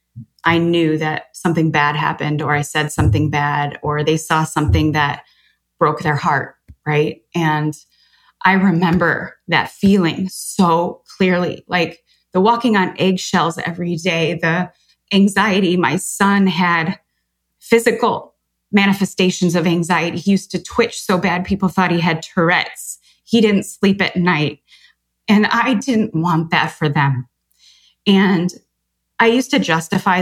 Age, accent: 20-39, American